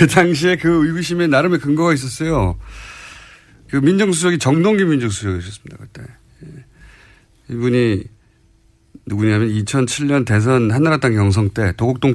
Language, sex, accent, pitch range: Korean, male, native, 105-150 Hz